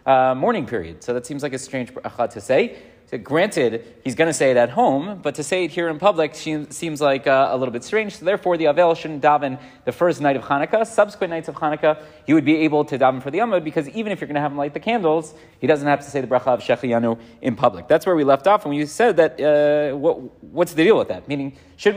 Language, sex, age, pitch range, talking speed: English, male, 30-49, 135-165 Hz, 275 wpm